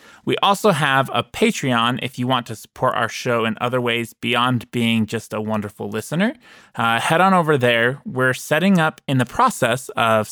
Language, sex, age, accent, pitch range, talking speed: English, male, 20-39, American, 115-140 Hz, 190 wpm